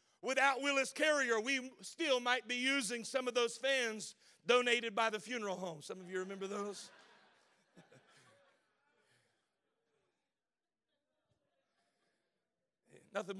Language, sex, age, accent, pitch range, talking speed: English, male, 40-59, American, 245-310 Hz, 105 wpm